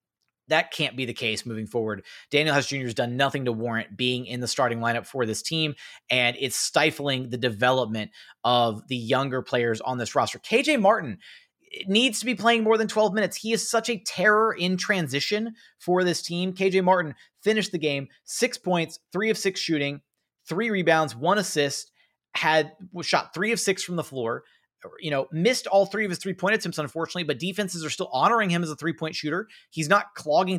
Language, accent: English, American